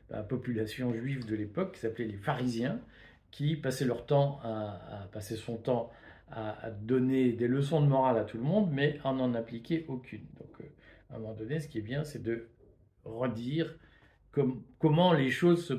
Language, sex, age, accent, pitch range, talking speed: French, male, 50-69, French, 115-145 Hz, 195 wpm